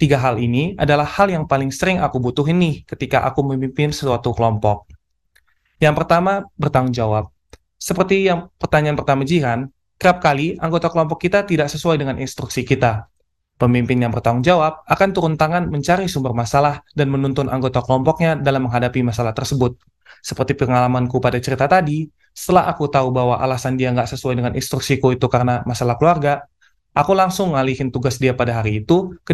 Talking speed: 165 wpm